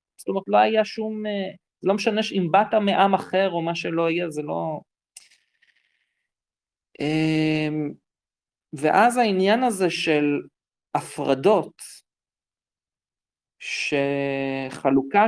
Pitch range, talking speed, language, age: 140-195 Hz, 90 wpm, Hebrew, 40-59